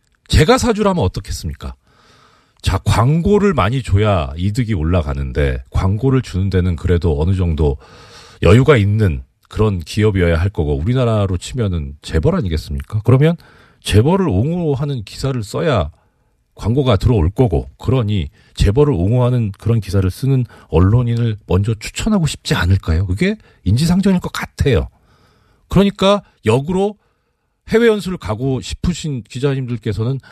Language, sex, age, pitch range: Korean, male, 40-59, 90-135 Hz